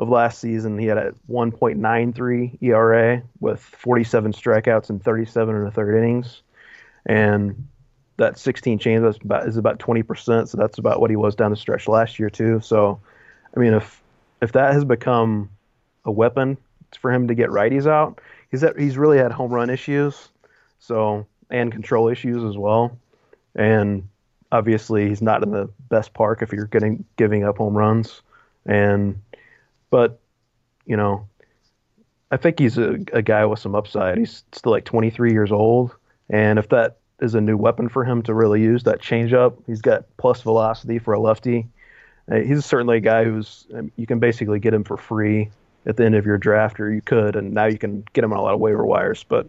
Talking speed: 190 wpm